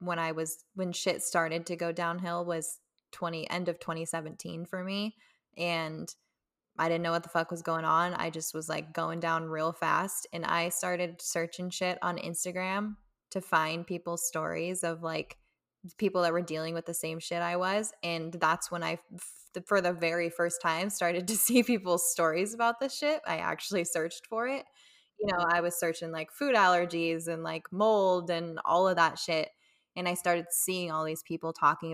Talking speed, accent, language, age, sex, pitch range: 195 wpm, American, English, 10-29, female, 165-185 Hz